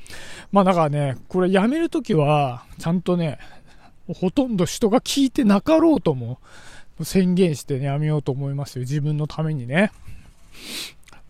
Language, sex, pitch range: Japanese, male, 145-220 Hz